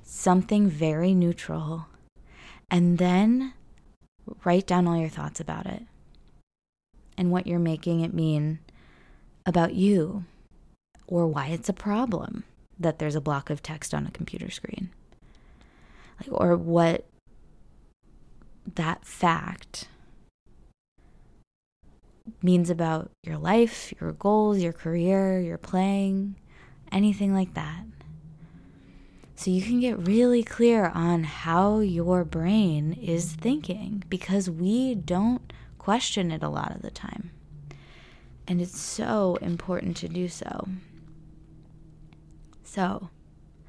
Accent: American